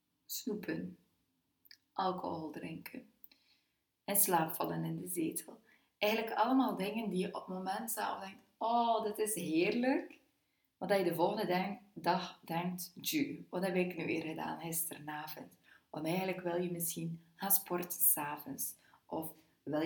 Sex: female